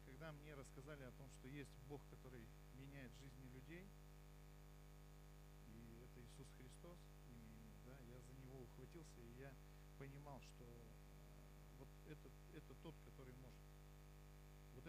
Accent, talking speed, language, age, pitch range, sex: native, 130 wpm, Russian, 40-59, 135-155 Hz, male